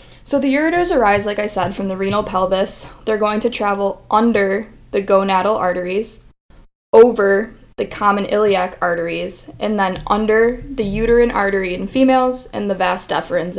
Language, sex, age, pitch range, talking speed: English, female, 10-29, 185-225 Hz, 160 wpm